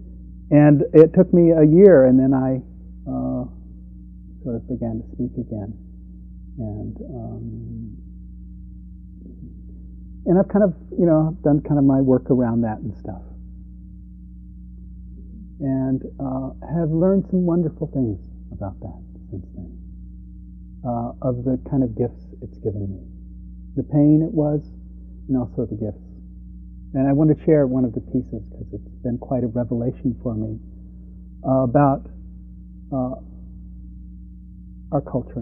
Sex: male